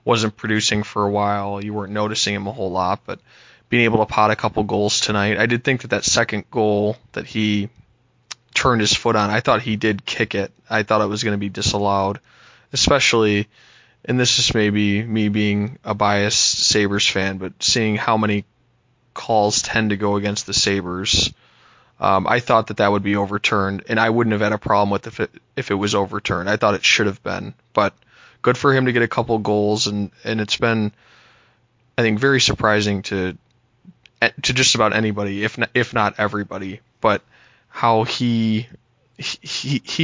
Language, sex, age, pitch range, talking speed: English, male, 20-39, 105-120 Hz, 190 wpm